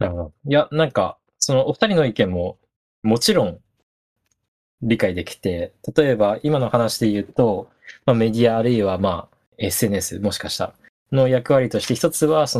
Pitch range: 95-130 Hz